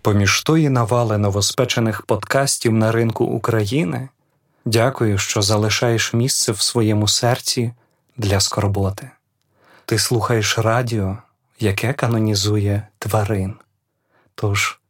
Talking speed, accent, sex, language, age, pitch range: 95 wpm, native, male, Ukrainian, 30-49, 110-130 Hz